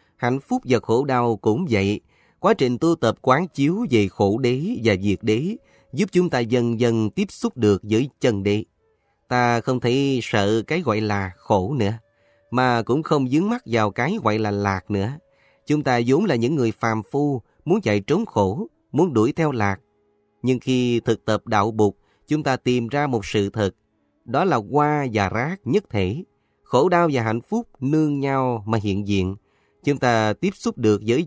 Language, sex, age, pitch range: Vietnamese, male, 30-49, 105-145 Hz